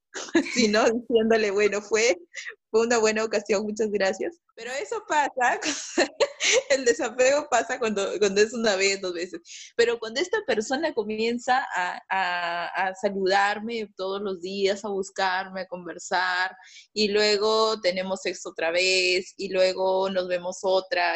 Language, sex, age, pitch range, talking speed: Spanish, female, 20-39, 190-235 Hz, 140 wpm